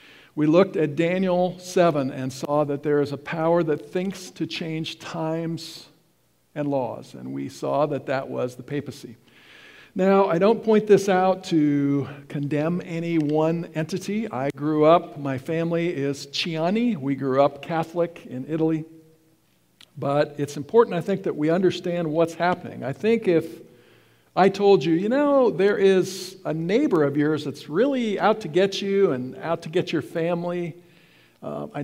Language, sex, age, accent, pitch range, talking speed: English, male, 50-69, American, 145-185 Hz, 170 wpm